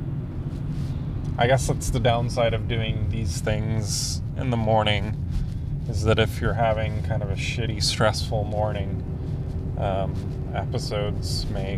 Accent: American